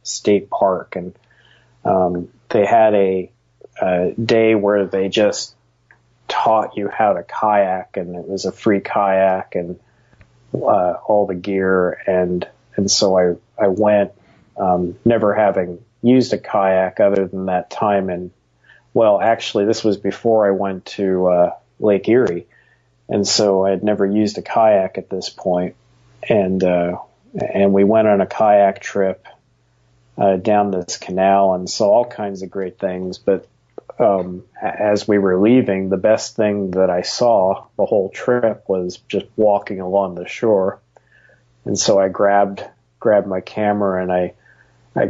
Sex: male